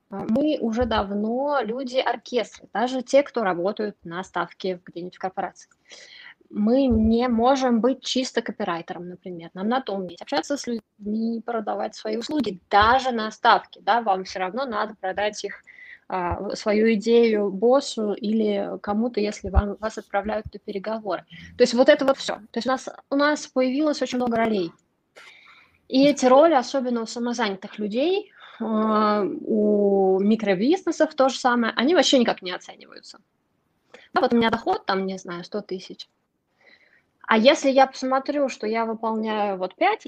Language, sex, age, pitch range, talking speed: Russian, female, 20-39, 200-265 Hz, 155 wpm